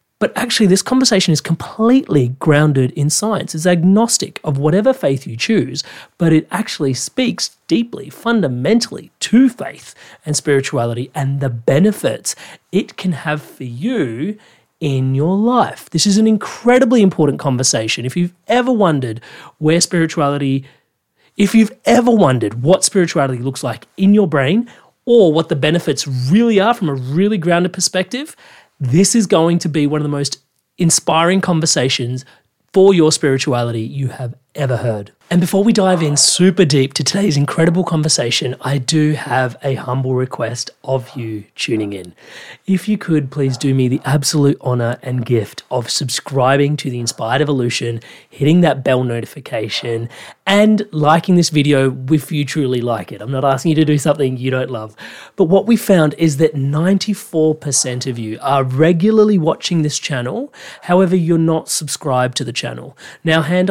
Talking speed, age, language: 165 wpm, 30-49, English